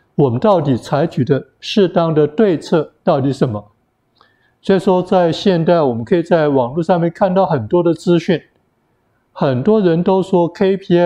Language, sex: Chinese, male